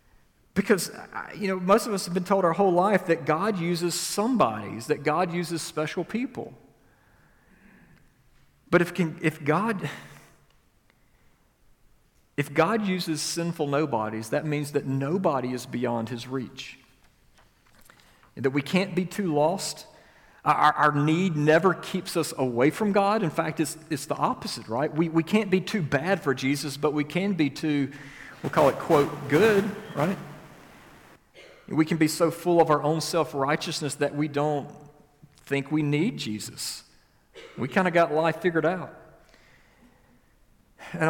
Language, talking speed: English, 155 wpm